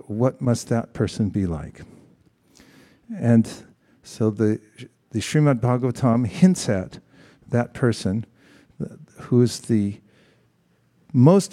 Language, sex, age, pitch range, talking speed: English, male, 50-69, 110-140 Hz, 105 wpm